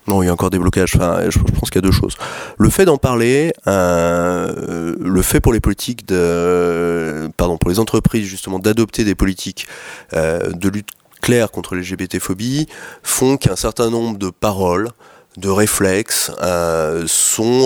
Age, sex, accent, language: 30-49, male, French, French